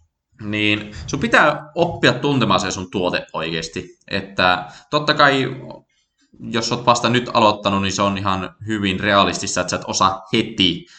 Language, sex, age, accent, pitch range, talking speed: Finnish, male, 20-39, native, 90-120 Hz, 155 wpm